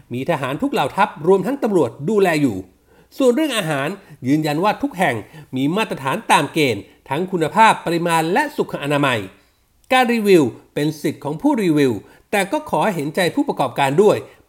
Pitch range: 155-245 Hz